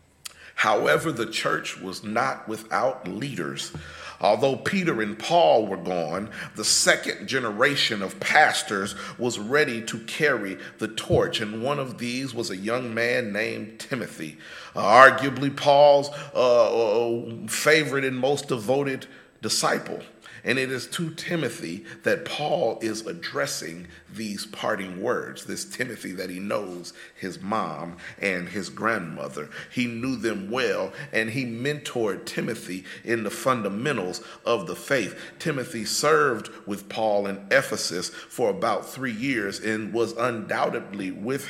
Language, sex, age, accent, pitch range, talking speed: English, male, 40-59, American, 110-145 Hz, 135 wpm